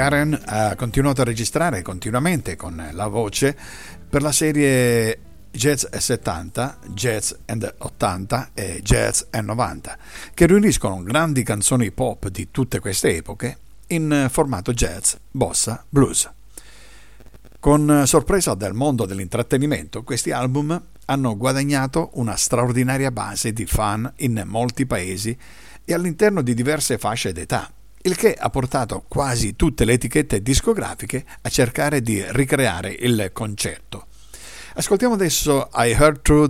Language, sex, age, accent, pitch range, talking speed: Italian, male, 50-69, native, 100-140 Hz, 130 wpm